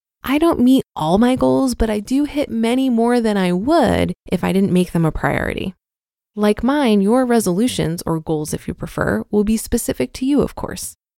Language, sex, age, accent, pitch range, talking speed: English, female, 20-39, American, 180-245 Hz, 205 wpm